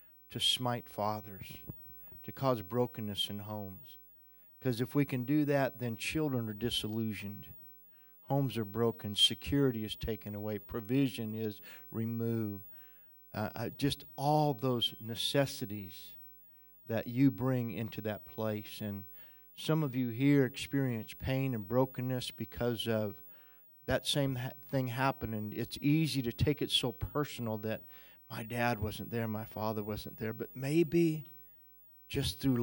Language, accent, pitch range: English, American, 100-130 Hz